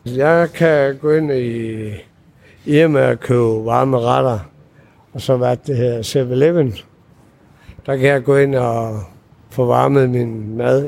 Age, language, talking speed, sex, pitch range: 60-79, Danish, 155 wpm, male, 115-145 Hz